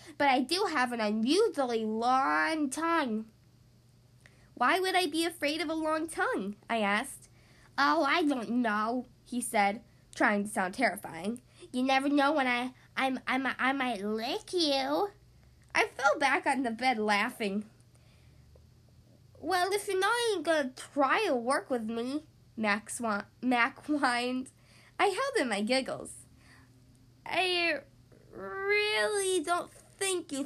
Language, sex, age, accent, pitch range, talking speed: English, female, 10-29, American, 210-320 Hz, 140 wpm